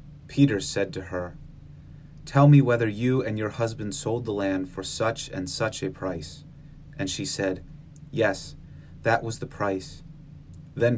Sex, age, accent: male, 30-49, American